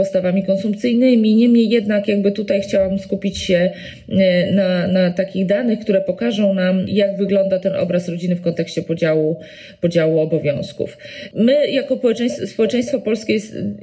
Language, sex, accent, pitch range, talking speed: Polish, female, native, 170-205 Hz, 135 wpm